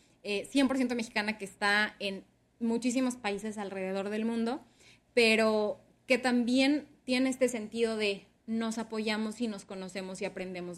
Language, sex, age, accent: Spanish, female, 20-39, Mexican